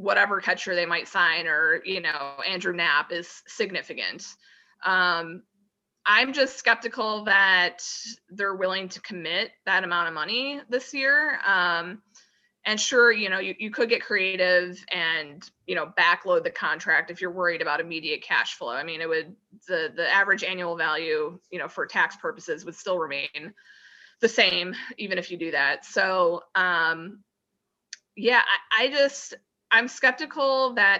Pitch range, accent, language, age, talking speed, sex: 180-235 Hz, American, English, 20-39, 160 wpm, female